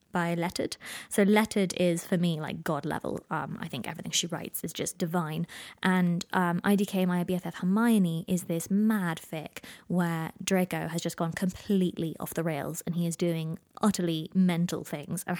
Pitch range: 170-210 Hz